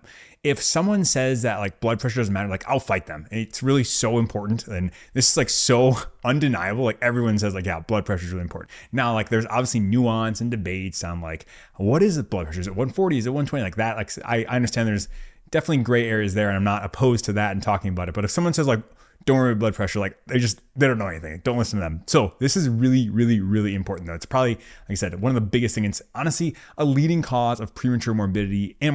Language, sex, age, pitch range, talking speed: English, male, 20-39, 100-130 Hz, 250 wpm